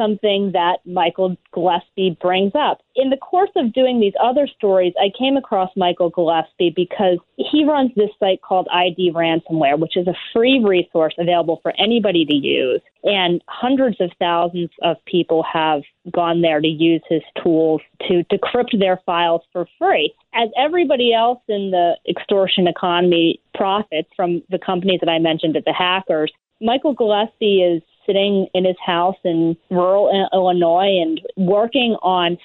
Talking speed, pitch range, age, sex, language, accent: 160 wpm, 170-210 Hz, 30-49, female, English, American